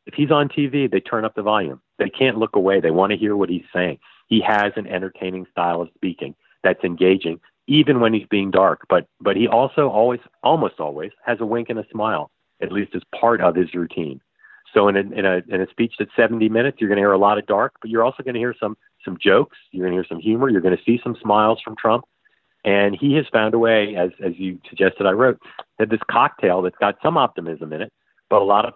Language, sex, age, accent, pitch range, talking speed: English, male, 40-59, American, 90-115 Hz, 250 wpm